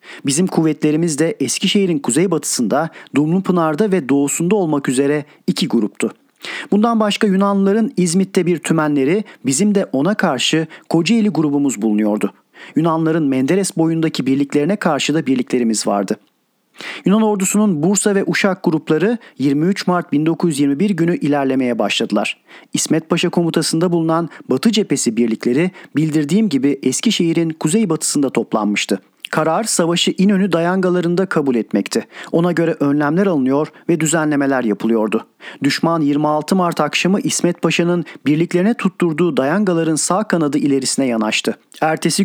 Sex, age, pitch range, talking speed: male, 40-59, 140-185 Hz, 120 wpm